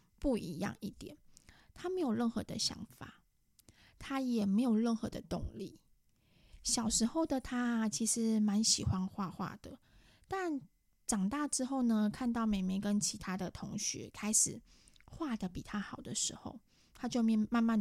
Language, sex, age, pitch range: Chinese, female, 20-39, 200-245 Hz